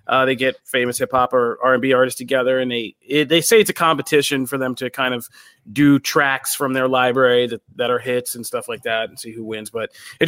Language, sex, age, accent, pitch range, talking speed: English, male, 30-49, American, 130-155 Hz, 245 wpm